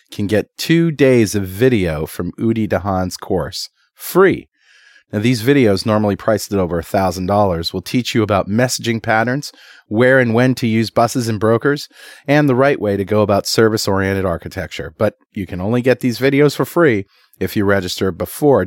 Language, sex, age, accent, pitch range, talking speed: English, male, 40-59, American, 100-130 Hz, 175 wpm